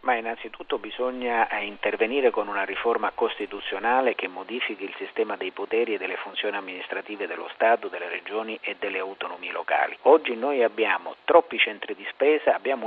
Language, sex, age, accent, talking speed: Italian, male, 50-69, native, 160 wpm